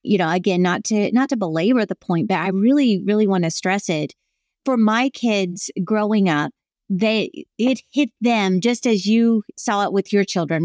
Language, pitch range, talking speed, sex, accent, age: English, 190-240 Hz, 195 wpm, female, American, 30-49